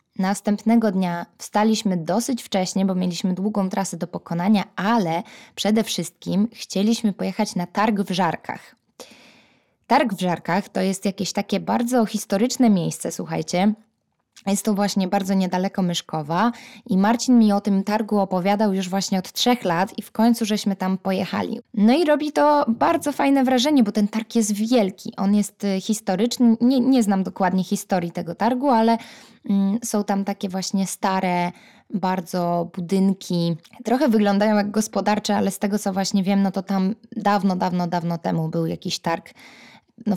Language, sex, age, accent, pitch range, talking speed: Polish, female, 20-39, native, 190-225 Hz, 160 wpm